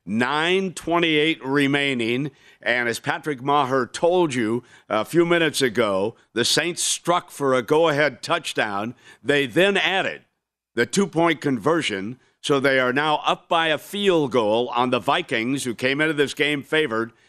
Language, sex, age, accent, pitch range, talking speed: English, male, 60-79, American, 125-165 Hz, 145 wpm